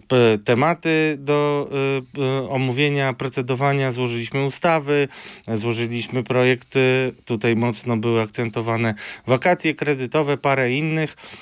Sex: male